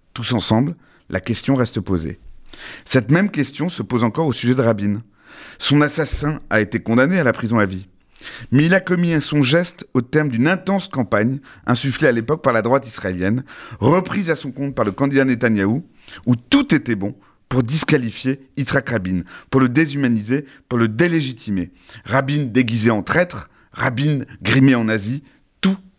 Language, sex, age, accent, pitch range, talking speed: French, male, 30-49, French, 110-145 Hz, 175 wpm